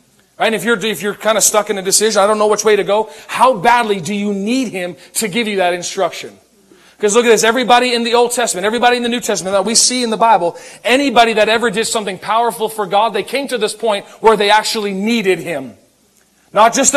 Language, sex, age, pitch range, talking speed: English, male, 40-59, 195-240 Hz, 250 wpm